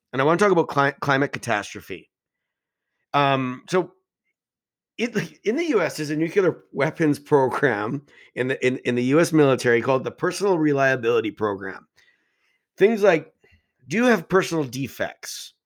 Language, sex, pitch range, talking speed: English, male, 140-180 Hz, 150 wpm